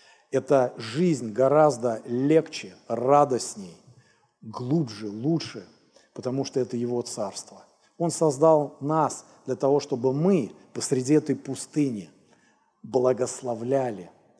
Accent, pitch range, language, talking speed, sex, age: native, 125-155 Hz, Russian, 95 wpm, male, 40-59